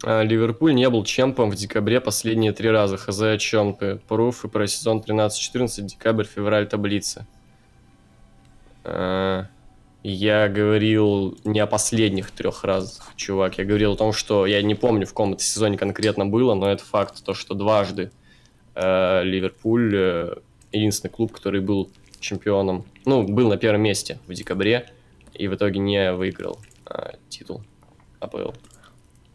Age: 20-39